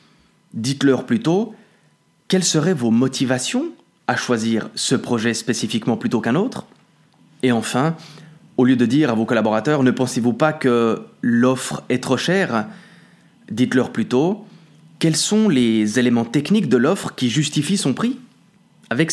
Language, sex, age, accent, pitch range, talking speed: French, male, 20-39, French, 120-180 Hz, 145 wpm